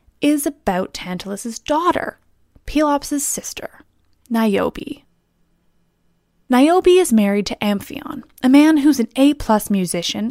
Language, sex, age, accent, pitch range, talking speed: English, female, 20-39, American, 205-295 Hz, 105 wpm